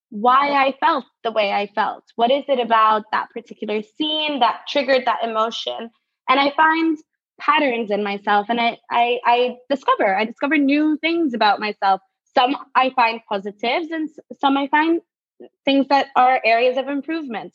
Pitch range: 220-280 Hz